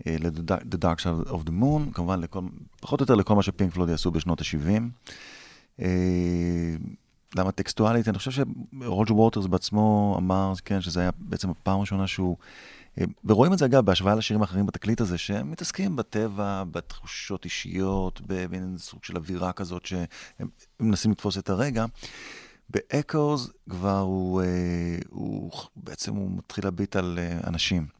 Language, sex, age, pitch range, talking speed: Hebrew, male, 30-49, 90-105 Hz, 145 wpm